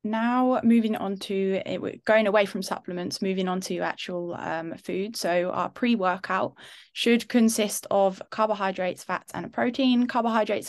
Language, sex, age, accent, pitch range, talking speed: English, female, 20-39, British, 185-220 Hz, 155 wpm